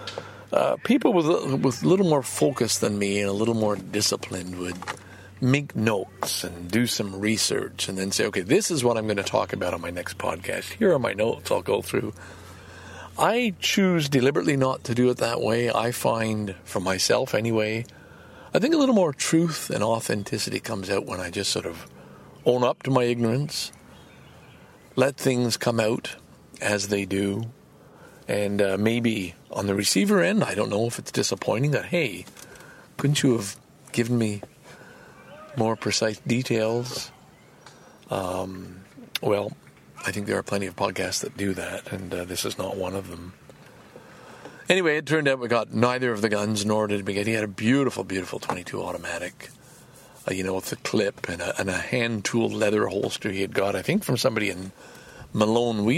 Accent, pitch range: American, 100-120 Hz